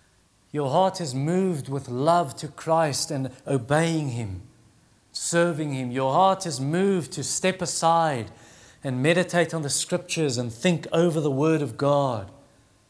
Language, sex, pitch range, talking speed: English, male, 120-160 Hz, 150 wpm